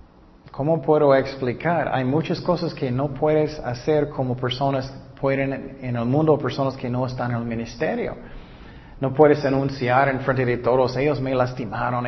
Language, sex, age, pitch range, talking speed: Spanish, male, 30-49, 125-155 Hz, 165 wpm